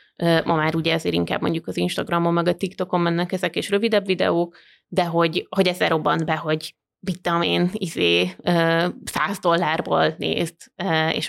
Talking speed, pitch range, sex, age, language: 155 wpm, 170-195 Hz, female, 20-39, Hungarian